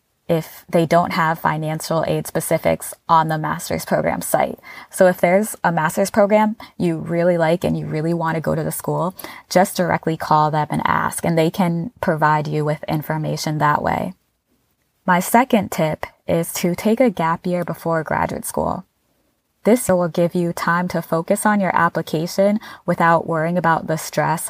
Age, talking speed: 20-39, 175 wpm